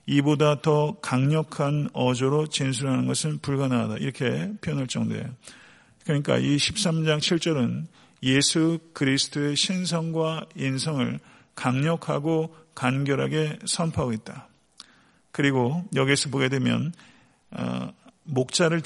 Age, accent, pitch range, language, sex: 50-69, native, 130-160 Hz, Korean, male